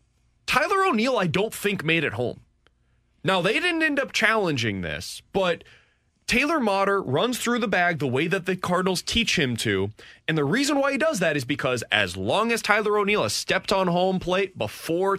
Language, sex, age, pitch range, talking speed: English, male, 20-39, 145-210 Hz, 200 wpm